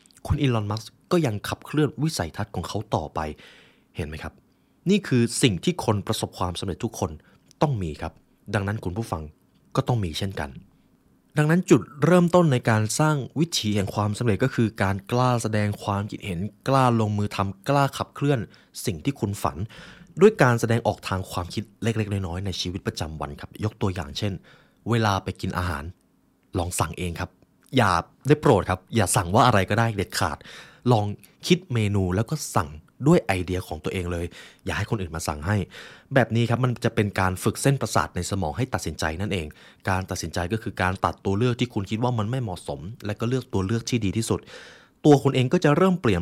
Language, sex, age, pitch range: Thai, male, 20-39, 95-125 Hz